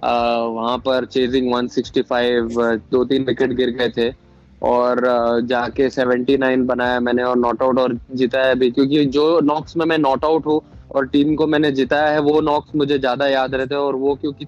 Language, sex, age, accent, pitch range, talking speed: Hindi, male, 20-39, native, 125-150 Hz, 165 wpm